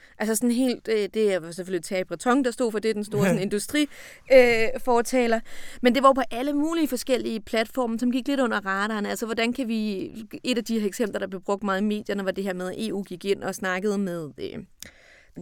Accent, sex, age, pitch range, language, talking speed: native, female, 30-49, 195-250 Hz, Danish, 220 wpm